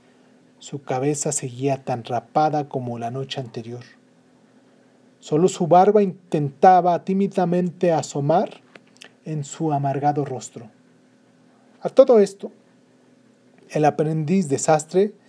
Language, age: Spanish, 40-59